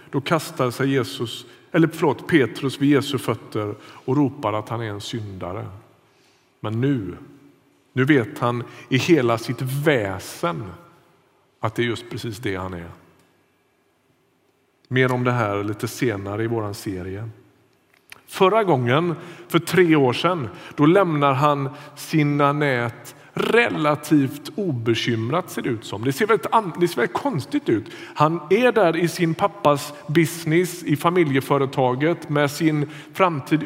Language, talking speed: Swedish, 145 wpm